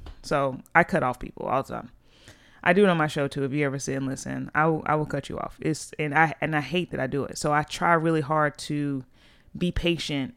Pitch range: 140-160 Hz